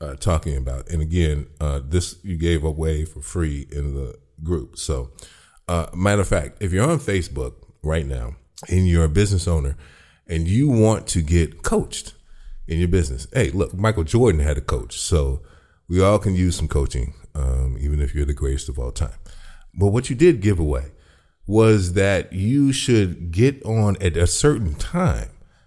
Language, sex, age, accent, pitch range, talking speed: English, male, 30-49, American, 75-95 Hz, 185 wpm